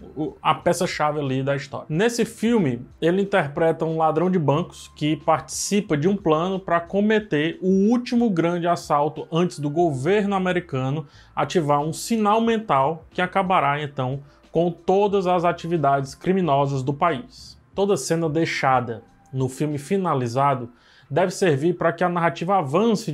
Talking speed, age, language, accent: 145 wpm, 20-39, Portuguese, Brazilian